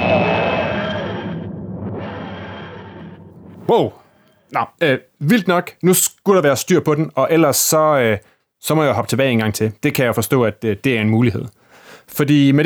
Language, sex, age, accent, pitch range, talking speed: Danish, male, 30-49, native, 115-175 Hz, 175 wpm